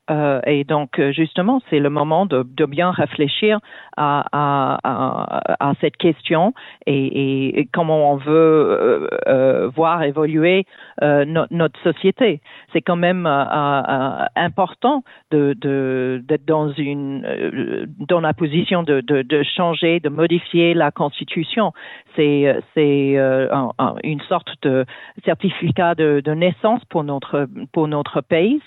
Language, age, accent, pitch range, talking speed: French, 50-69, French, 145-175 Hz, 145 wpm